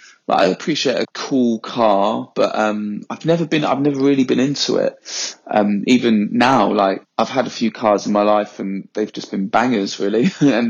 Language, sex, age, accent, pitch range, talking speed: English, male, 20-39, British, 105-125 Hz, 195 wpm